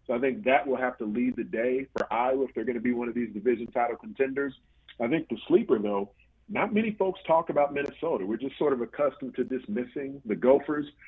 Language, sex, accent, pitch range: English, male, American, 120-145 Hz